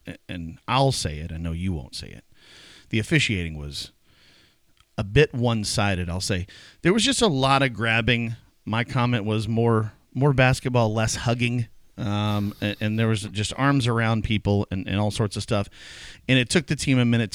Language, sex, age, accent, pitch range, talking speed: English, male, 40-59, American, 95-115 Hz, 190 wpm